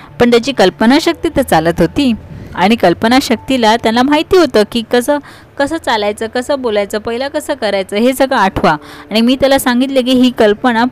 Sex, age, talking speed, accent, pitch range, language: female, 20-39, 175 wpm, native, 195-260 Hz, Marathi